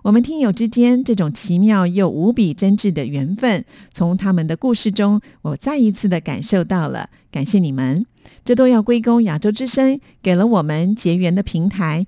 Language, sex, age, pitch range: Chinese, female, 50-69, 175-225 Hz